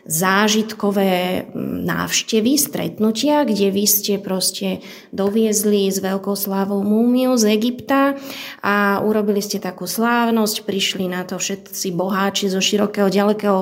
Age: 20-39